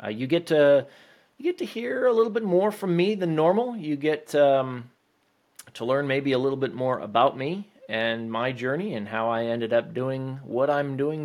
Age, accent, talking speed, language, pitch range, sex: 30-49, American, 215 wpm, English, 115-145 Hz, male